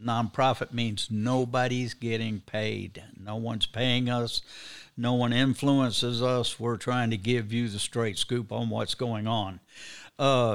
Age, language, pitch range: 60-79, English, 110-135 Hz